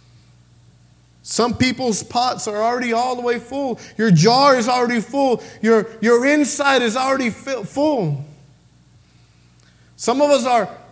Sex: male